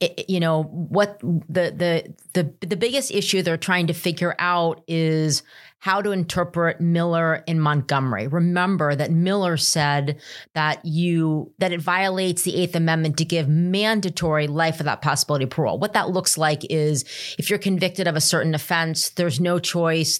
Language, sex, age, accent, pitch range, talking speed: English, female, 30-49, American, 160-195 Hz, 170 wpm